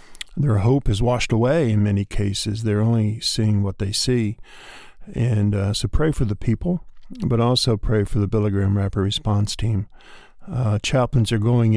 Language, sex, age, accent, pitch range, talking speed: English, male, 50-69, American, 105-120 Hz, 175 wpm